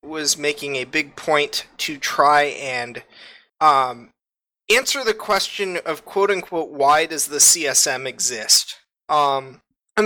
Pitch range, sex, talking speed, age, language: 140-175 Hz, male, 125 wpm, 20-39, English